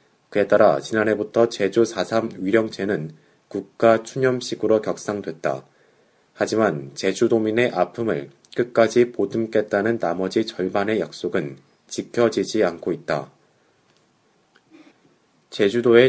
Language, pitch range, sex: Korean, 100-120 Hz, male